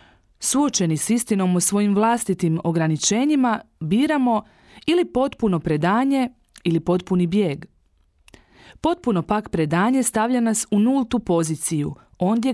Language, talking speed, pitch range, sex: Croatian, 110 wpm, 175-250 Hz, female